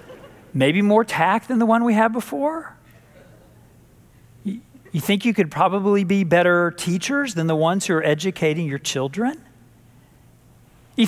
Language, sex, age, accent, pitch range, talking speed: English, male, 40-59, American, 200-270 Hz, 140 wpm